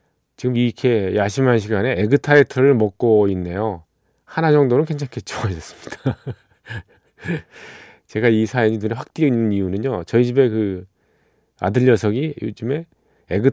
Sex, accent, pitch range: male, native, 100-140 Hz